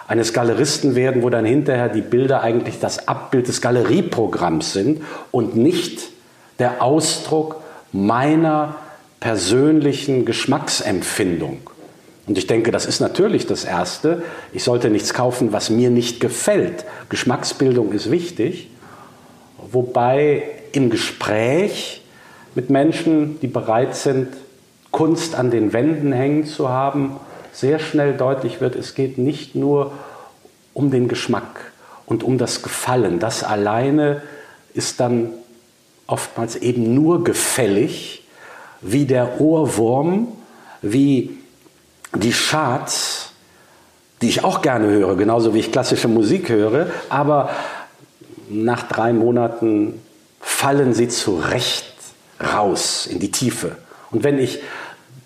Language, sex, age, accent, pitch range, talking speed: German, male, 50-69, German, 120-150 Hz, 120 wpm